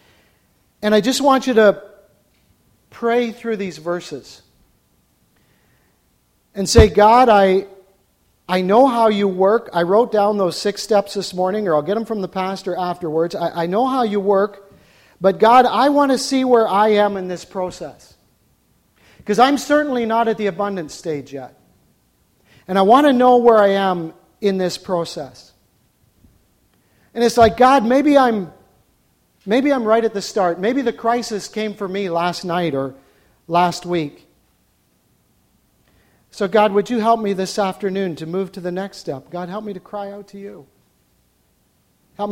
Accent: American